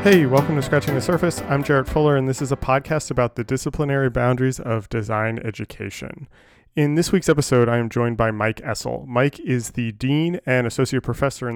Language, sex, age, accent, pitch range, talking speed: English, male, 20-39, American, 115-140 Hz, 200 wpm